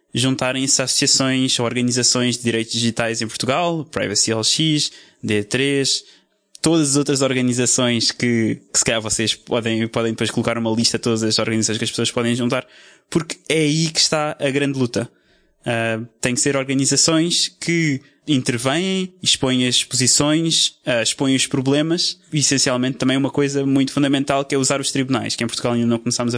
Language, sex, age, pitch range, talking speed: Portuguese, male, 20-39, 125-150 Hz, 165 wpm